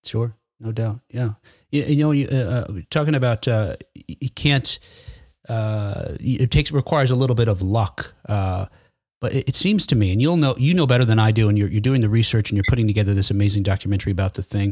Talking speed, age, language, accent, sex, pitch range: 225 wpm, 30-49, English, American, male, 105-145 Hz